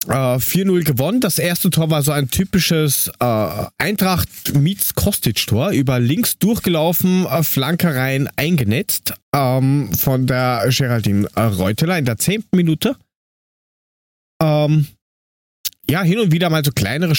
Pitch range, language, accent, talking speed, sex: 115-155 Hz, German, German, 100 wpm, male